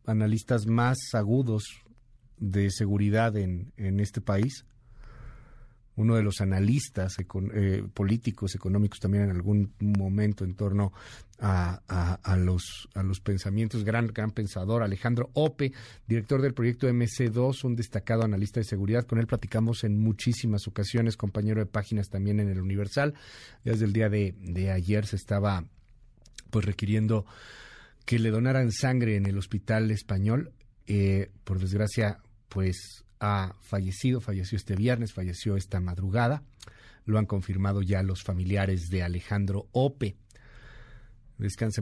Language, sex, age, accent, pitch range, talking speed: Spanish, male, 50-69, Mexican, 100-115 Hz, 140 wpm